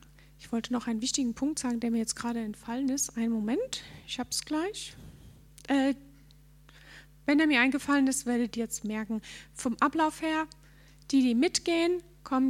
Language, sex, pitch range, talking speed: German, female, 230-275 Hz, 175 wpm